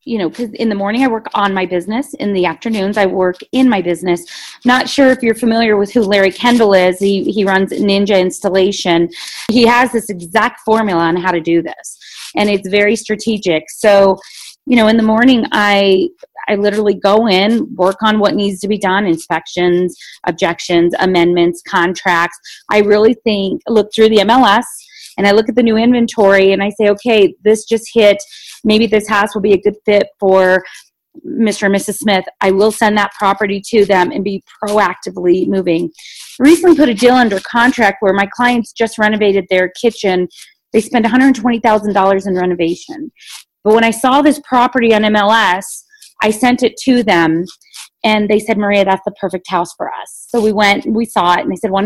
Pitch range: 190-230 Hz